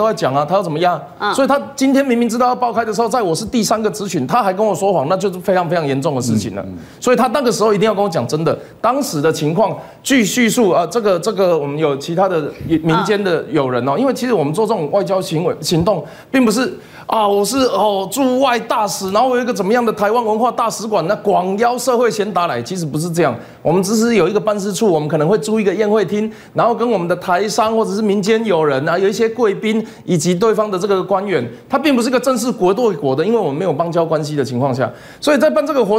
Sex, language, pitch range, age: male, Chinese, 180-235 Hz, 20-39